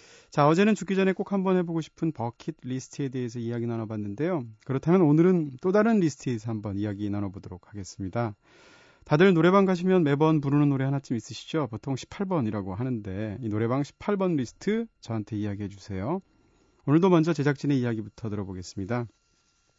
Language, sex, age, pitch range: Korean, male, 30-49, 110-165 Hz